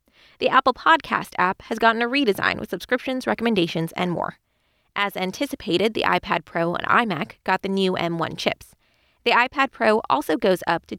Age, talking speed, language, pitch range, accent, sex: 20-39, 175 wpm, English, 190-255 Hz, American, female